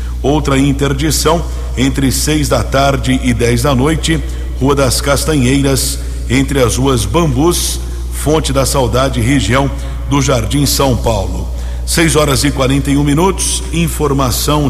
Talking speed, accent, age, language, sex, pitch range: 135 wpm, Brazilian, 60-79, Portuguese, male, 120-140 Hz